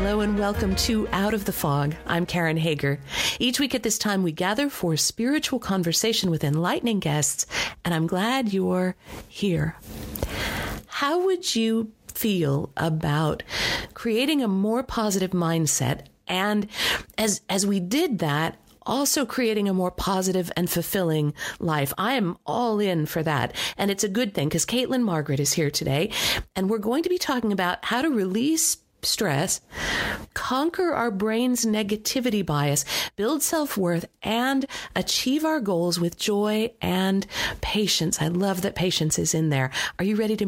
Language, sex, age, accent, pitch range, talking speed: English, female, 50-69, American, 165-225 Hz, 160 wpm